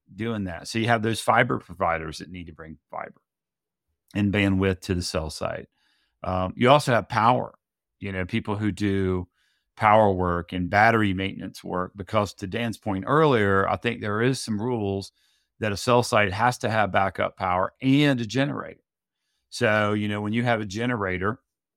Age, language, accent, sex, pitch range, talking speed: 40-59, English, American, male, 95-115 Hz, 180 wpm